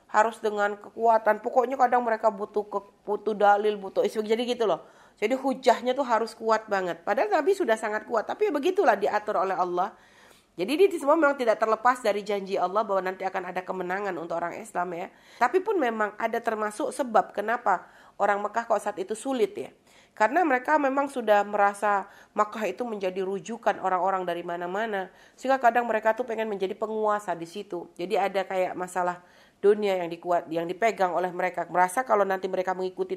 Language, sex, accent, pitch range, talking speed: Indonesian, female, native, 185-250 Hz, 180 wpm